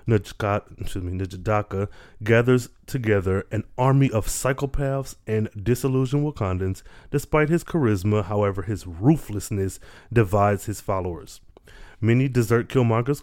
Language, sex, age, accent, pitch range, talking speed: English, male, 20-39, American, 100-115 Hz, 110 wpm